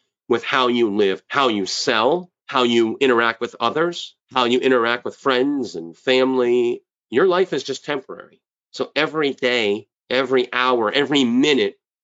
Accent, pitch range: American, 105-135 Hz